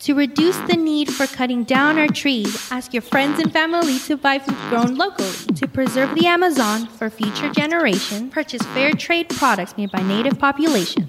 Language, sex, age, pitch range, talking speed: English, female, 20-39, 240-315 Hz, 185 wpm